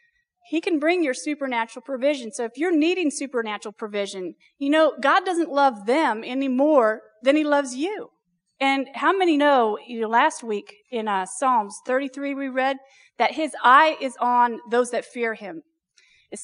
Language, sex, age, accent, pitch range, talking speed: English, female, 40-59, American, 225-290 Hz, 170 wpm